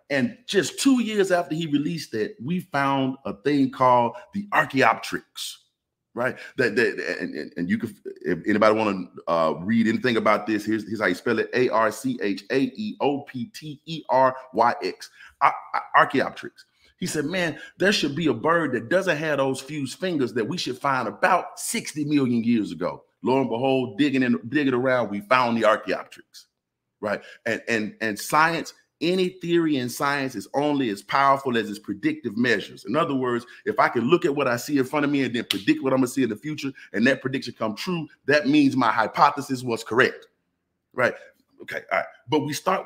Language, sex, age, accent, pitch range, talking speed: English, male, 30-49, American, 125-190 Hz, 205 wpm